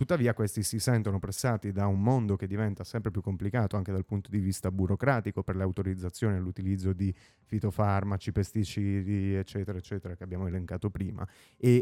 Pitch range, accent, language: 95-110 Hz, native, Italian